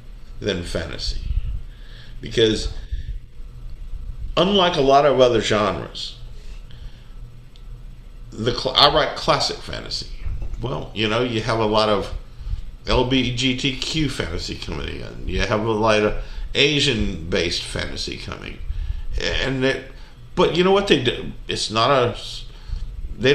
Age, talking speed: 50-69, 125 wpm